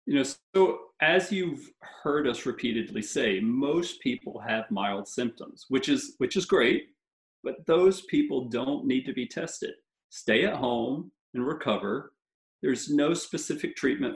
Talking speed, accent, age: 155 wpm, American, 40-59